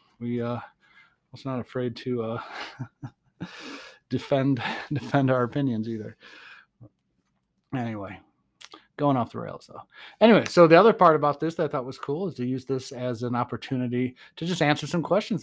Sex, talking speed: male, 165 wpm